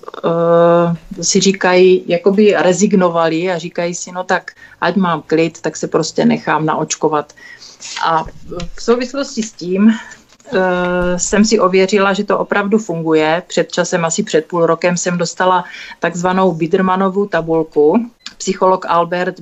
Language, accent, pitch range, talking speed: Czech, native, 160-185 Hz, 135 wpm